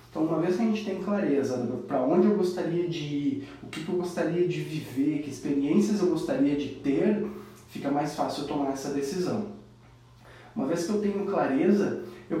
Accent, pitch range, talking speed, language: Brazilian, 140-195 Hz, 195 wpm, Portuguese